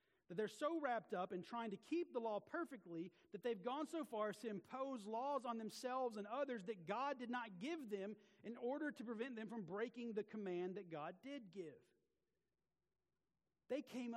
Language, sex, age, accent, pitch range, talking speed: English, male, 40-59, American, 195-250 Hz, 195 wpm